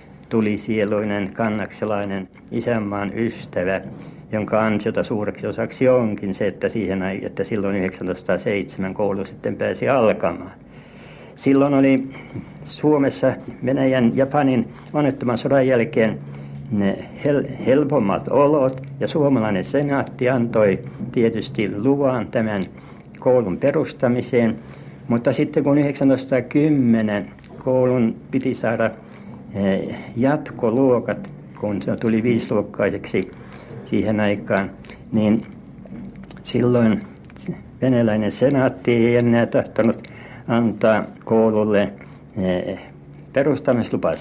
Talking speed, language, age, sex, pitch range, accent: 85 wpm, Finnish, 60-79, male, 105-130 Hz, native